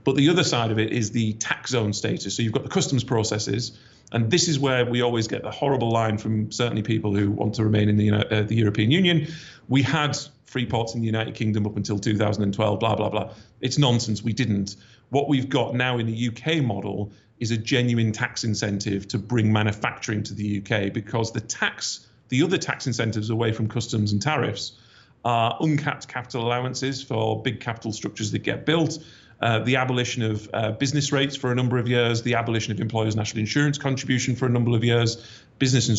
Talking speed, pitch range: 210 wpm, 110-130 Hz